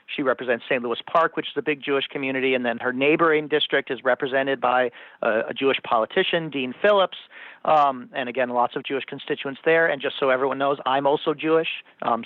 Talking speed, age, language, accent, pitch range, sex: 200 wpm, 40-59, English, American, 135-185 Hz, male